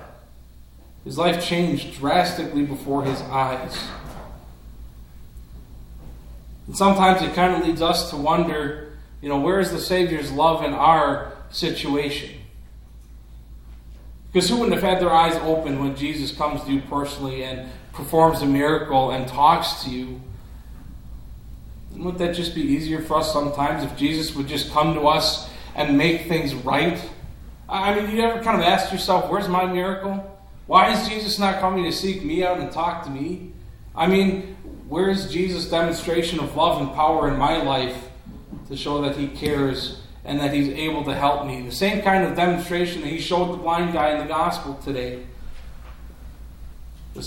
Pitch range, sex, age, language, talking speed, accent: 130-165 Hz, male, 40-59, English, 170 wpm, American